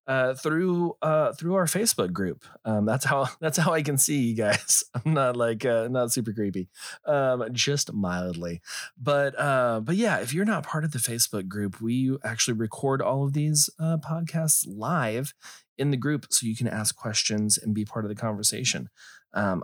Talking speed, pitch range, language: 195 wpm, 100-135 Hz, English